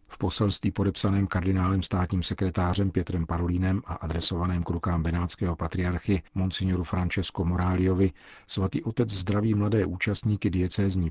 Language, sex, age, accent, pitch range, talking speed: Czech, male, 40-59, native, 85-95 Hz, 120 wpm